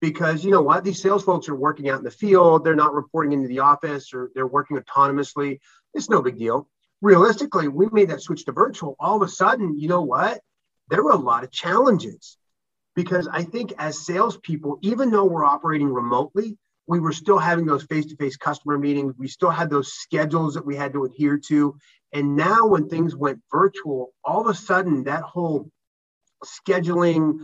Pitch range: 140-170 Hz